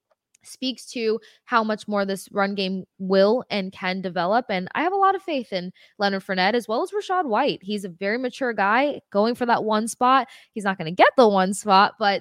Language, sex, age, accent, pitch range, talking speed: English, female, 20-39, American, 190-235 Hz, 225 wpm